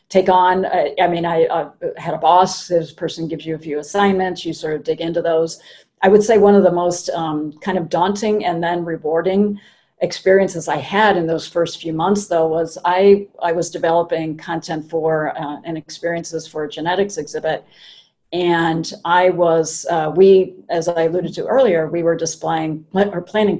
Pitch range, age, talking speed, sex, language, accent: 160-185 Hz, 50-69, 190 wpm, female, English, American